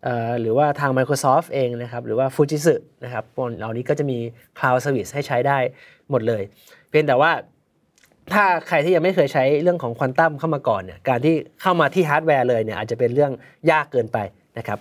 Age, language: 20-39, Thai